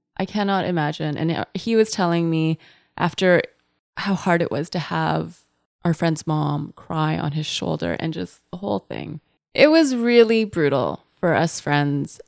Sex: female